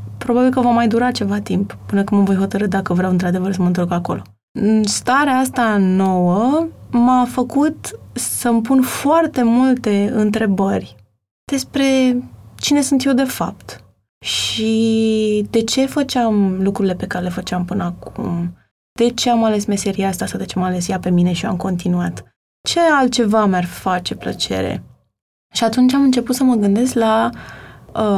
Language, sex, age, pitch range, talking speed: Romanian, female, 20-39, 195-255 Hz, 165 wpm